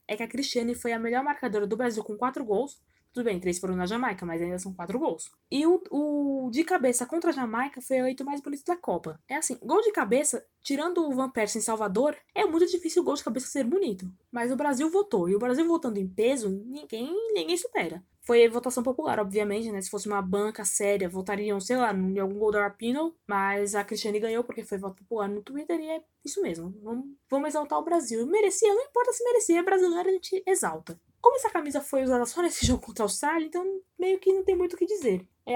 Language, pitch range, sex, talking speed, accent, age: Portuguese, 210-325 Hz, female, 230 wpm, Brazilian, 20-39